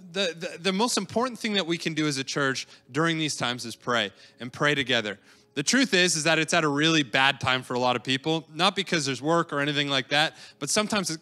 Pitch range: 140-190 Hz